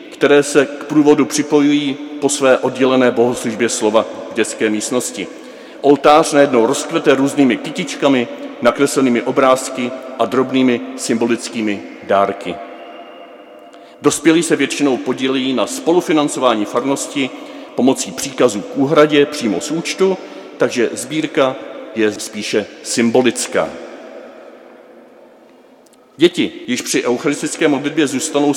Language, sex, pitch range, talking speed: Czech, male, 130-180 Hz, 105 wpm